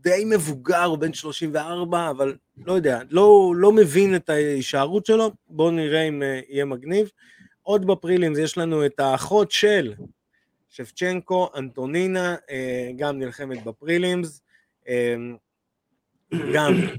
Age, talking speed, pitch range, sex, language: 20-39, 115 wpm, 125-170 Hz, male, Hebrew